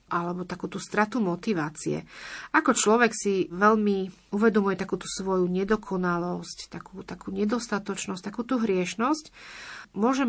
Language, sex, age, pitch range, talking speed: Slovak, female, 40-59, 185-215 Hz, 105 wpm